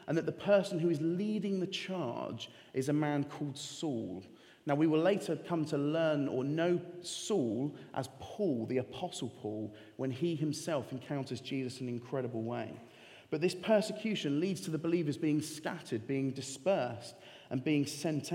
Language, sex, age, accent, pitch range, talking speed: English, male, 30-49, British, 135-175 Hz, 170 wpm